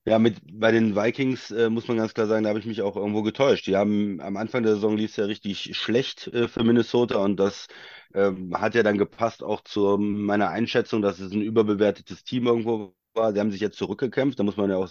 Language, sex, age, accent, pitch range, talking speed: German, male, 30-49, German, 100-120 Hz, 240 wpm